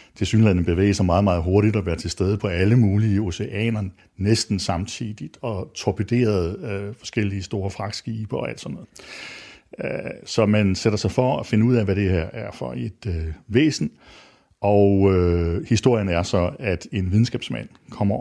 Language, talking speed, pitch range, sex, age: Danish, 175 wpm, 95-115 Hz, male, 60-79